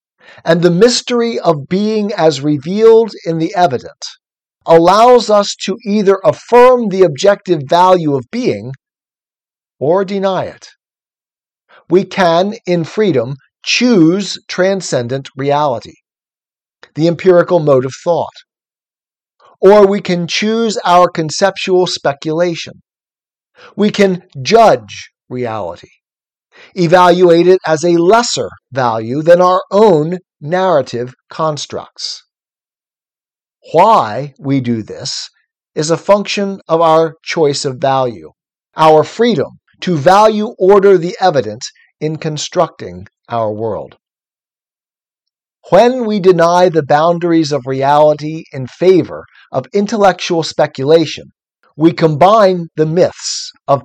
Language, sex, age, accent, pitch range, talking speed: English, male, 50-69, American, 150-195 Hz, 110 wpm